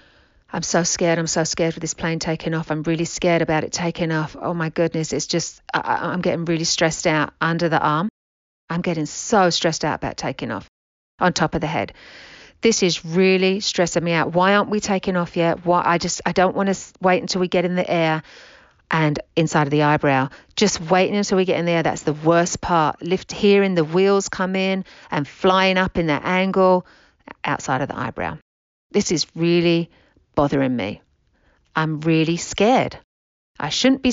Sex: female